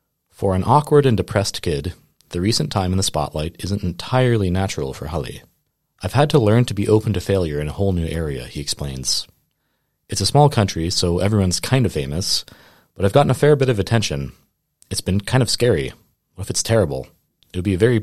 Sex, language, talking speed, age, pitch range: male, English, 215 wpm, 30-49, 80-110 Hz